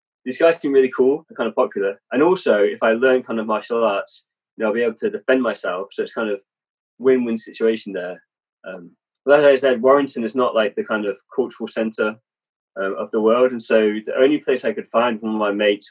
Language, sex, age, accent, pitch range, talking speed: English, male, 20-39, British, 110-145 Hz, 235 wpm